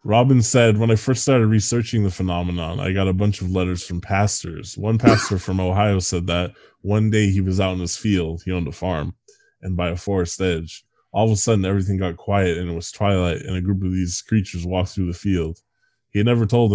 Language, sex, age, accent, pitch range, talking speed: English, male, 10-29, American, 90-110 Hz, 235 wpm